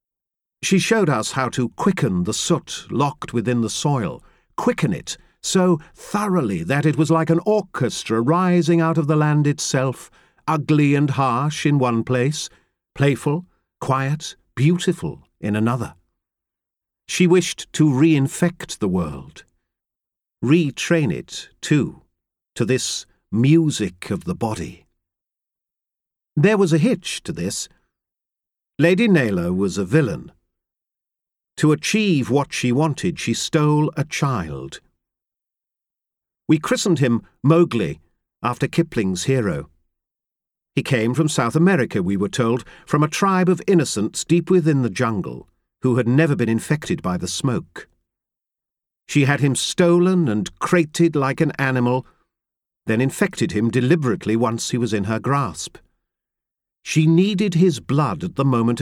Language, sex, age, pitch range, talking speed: English, male, 50-69, 115-170 Hz, 135 wpm